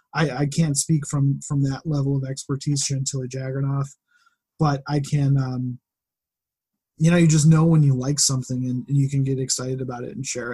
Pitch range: 130-150 Hz